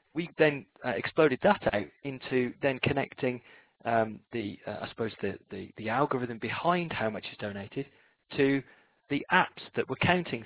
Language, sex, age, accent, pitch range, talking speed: English, male, 30-49, British, 115-155 Hz, 165 wpm